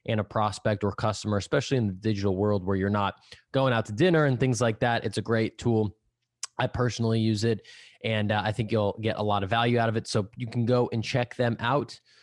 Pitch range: 105-130 Hz